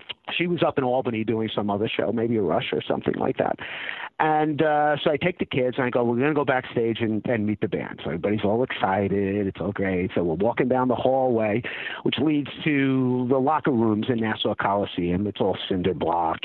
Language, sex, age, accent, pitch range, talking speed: English, male, 50-69, American, 105-150 Hz, 225 wpm